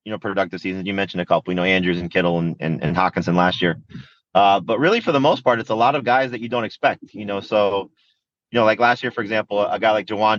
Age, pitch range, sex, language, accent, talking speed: 30-49, 100-125 Hz, male, English, American, 285 wpm